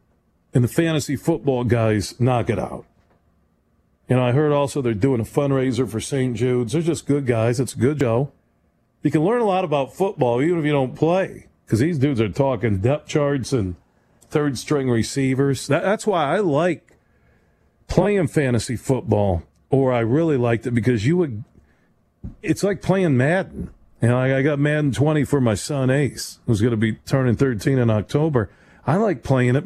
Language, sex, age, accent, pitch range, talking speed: English, male, 40-59, American, 125-185 Hz, 190 wpm